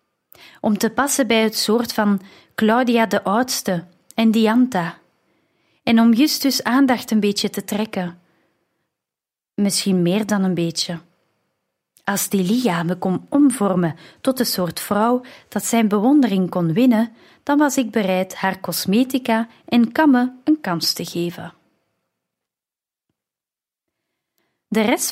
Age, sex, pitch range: 30-49, female, 185-240 Hz